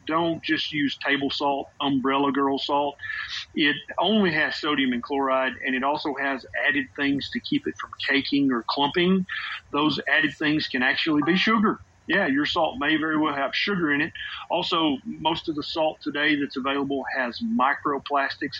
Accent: American